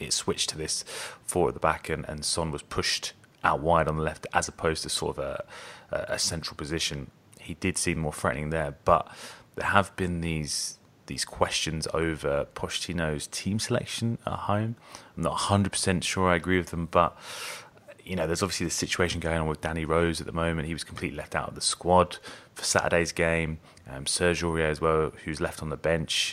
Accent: British